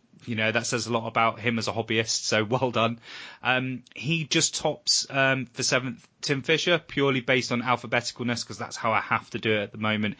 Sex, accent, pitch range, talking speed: male, British, 110-130 Hz, 225 wpm